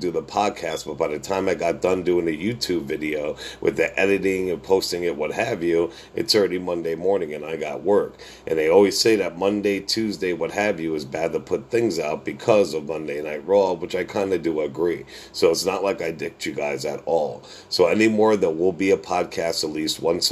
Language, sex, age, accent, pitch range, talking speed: English, male, 50-69, American, 85-100 Hz, 235 wpm